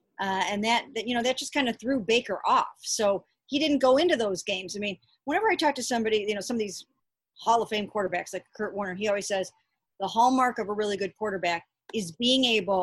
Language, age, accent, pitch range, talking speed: English, 40-59, American, 190-230 Hz, 245 wpm